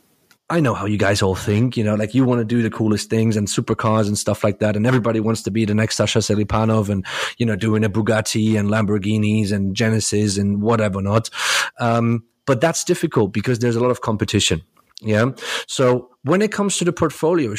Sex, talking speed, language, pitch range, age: male, 215 wpm, English, 110-140 Hz, 30-49